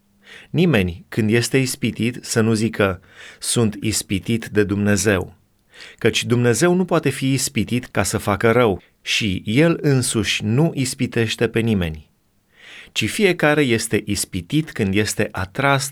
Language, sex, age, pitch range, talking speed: Romanian, male, 30-49, 100-135 Hz, 130 wpm